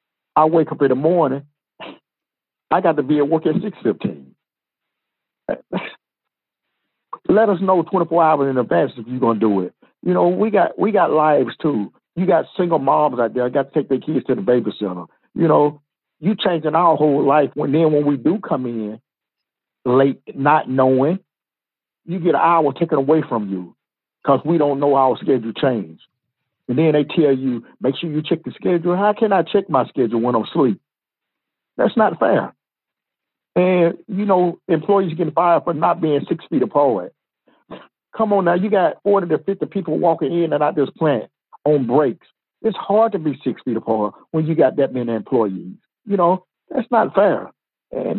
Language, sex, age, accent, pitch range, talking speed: English, male, 50-69, American, 135-180 Hz, 190 wpm